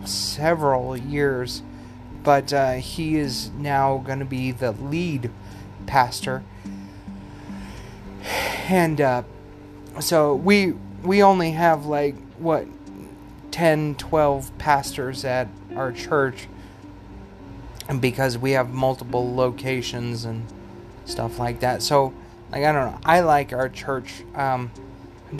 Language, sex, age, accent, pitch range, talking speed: English, male, 30-49, American, 100-155 Hz, 115 wpm